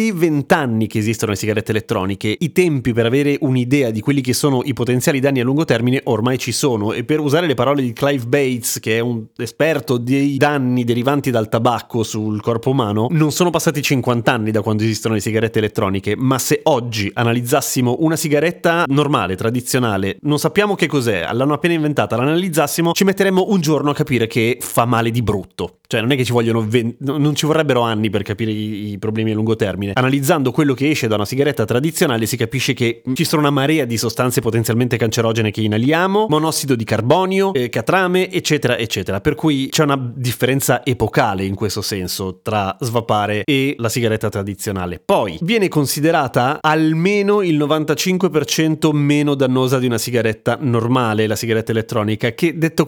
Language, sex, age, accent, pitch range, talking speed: Italian, male, 30-49, native, 115-150 Hz, 185 wpm